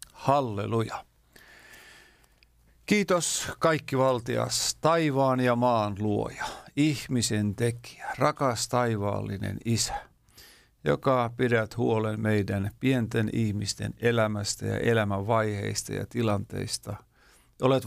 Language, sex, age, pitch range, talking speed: Finnish, male, 50-69, 110-135 Hz, 85 wpm